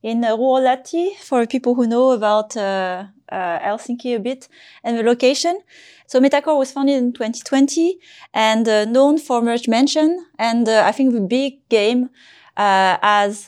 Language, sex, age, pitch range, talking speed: English, female, 20-39, 215-265 Hz, 160 wpm